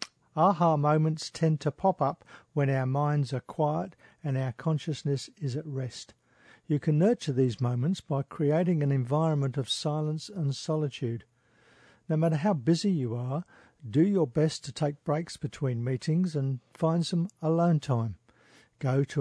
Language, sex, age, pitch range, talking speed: English, male, 50-69, 135-160 Hz, 160 wpm